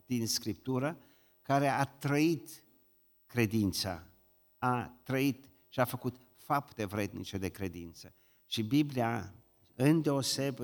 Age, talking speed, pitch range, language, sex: 50-69, 100 wpm, 105-140 Hz, Romanian, male